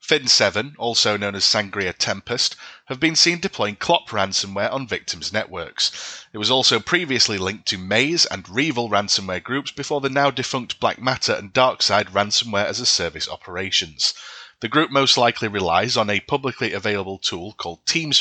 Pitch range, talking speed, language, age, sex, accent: 100-135 Hz, 155 wpm, English, 30-49, male, British